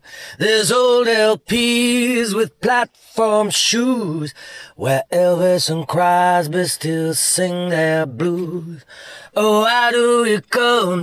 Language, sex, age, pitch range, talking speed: English, male, 30-49, 175-215 Hz, 105 wpm